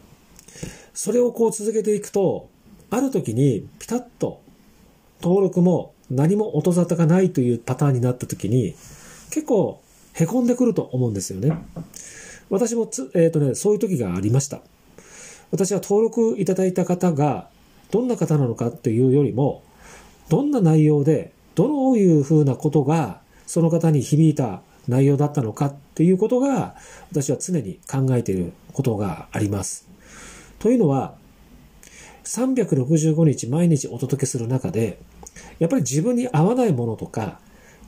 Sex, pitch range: male, 135-205 Hz